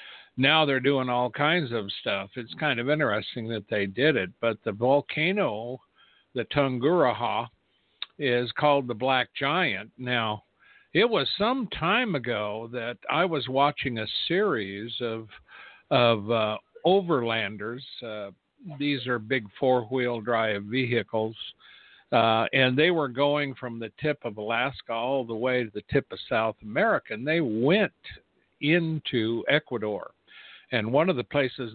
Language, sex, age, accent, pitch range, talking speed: English, male, 60-79, American, 110-140 Hz, 145 wpm